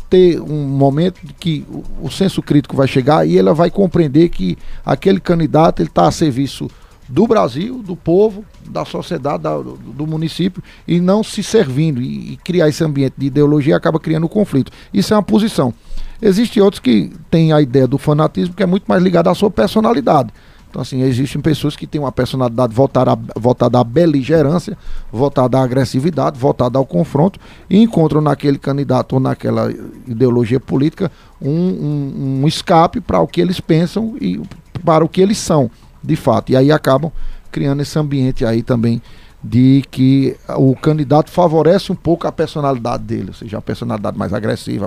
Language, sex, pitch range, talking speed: Portuguese, male, 130-175 Hz, 175 wpm